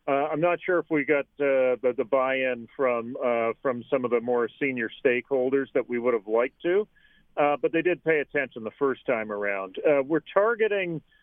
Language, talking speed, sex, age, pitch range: English, 210 wpm, male, 40-59, 130-160 Hz